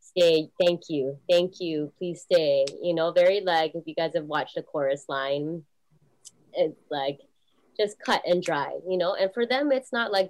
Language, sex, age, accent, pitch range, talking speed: English, female, 20-39, American, 150-185 Hz, 190 wpm